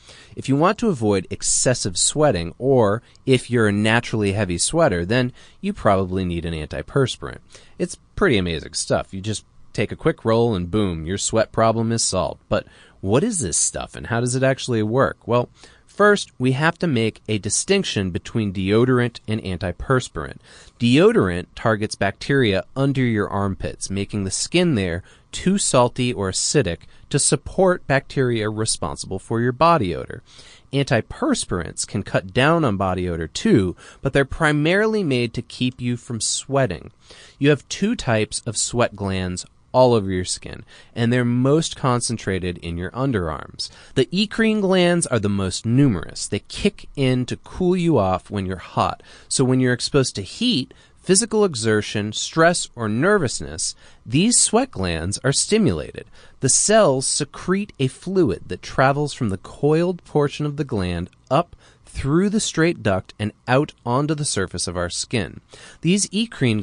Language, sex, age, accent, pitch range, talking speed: English, male, 30-49, American, 100-145 Hz, 160 wpm